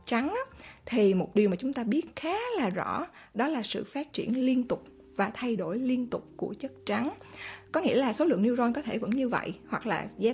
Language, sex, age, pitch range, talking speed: Vietnamese, female, 20-39, 215-270 Hz, 230 wpm